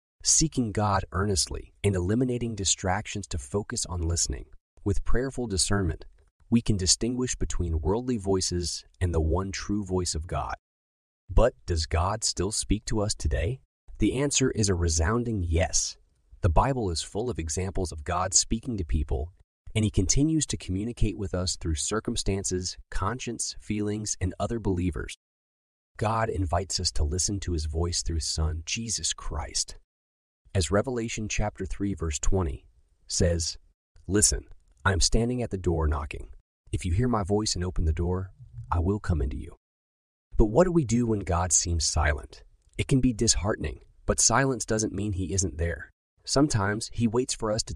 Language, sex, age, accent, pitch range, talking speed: English, male, 30-49, American, 80-110 Hz, 165 wpm